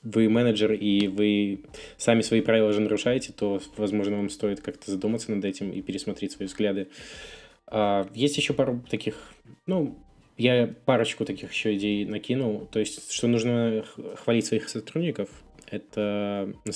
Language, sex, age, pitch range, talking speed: Russian, male, 20-39, 105-125 Hz, 145 wpm